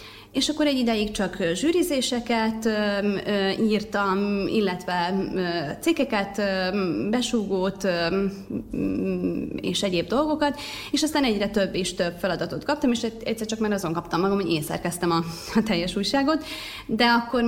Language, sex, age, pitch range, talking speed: Hungarian, female, 30-49, 185-235 Hz, 125 wpm